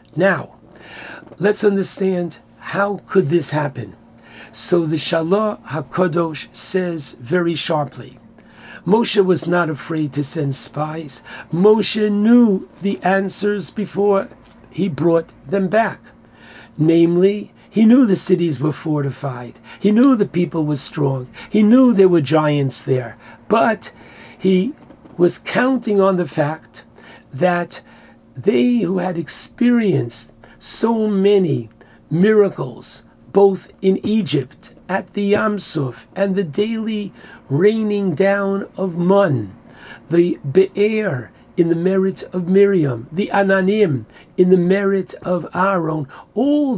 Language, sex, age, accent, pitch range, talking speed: English, male, 60-79, American, 150-200 Hz, 120 wpm